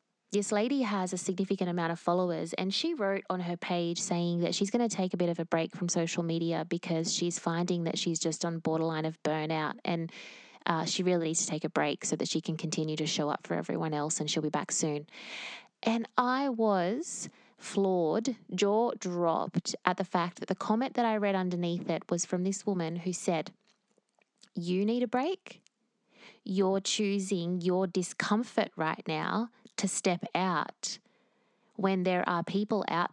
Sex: female